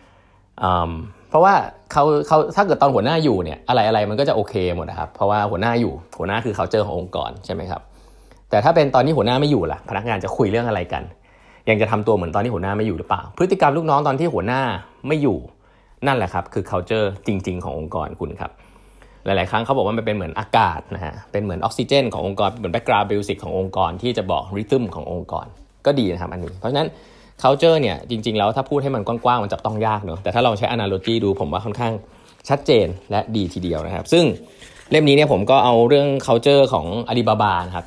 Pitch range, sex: 95-120 Hz, male